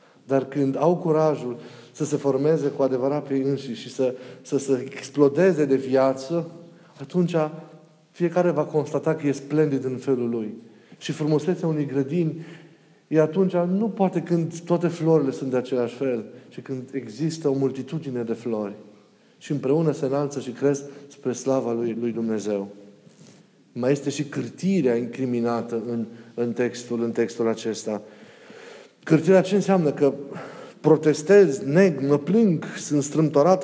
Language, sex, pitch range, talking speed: Romanian, male, 135-180 Hz, 150 wpm